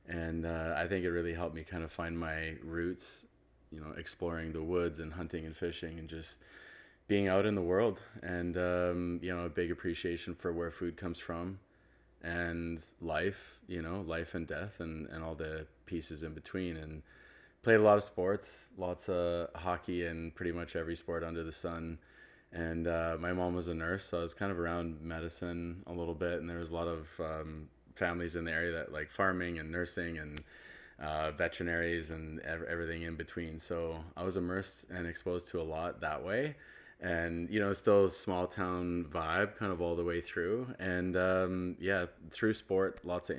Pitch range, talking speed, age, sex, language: 80-90 Hz, 200 wpm, 20-39, male, English